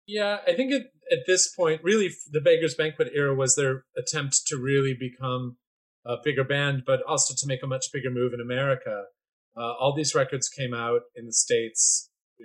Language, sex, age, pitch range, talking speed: English, male, 30-49, 125-160 Hz, 200 wpm